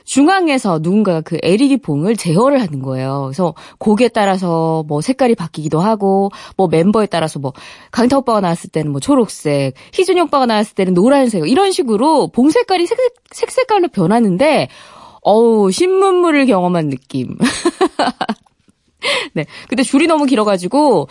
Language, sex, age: Korean, female, 20-39